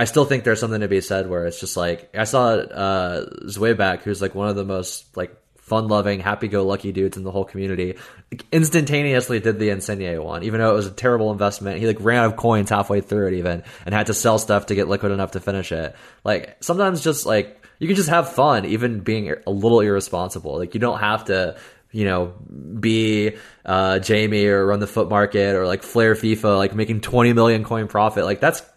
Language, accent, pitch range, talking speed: English, American, 100-115 Hz, 225 wpm